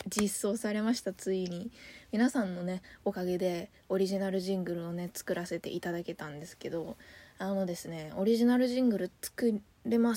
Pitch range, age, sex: 185-250 Hz, 20-39, female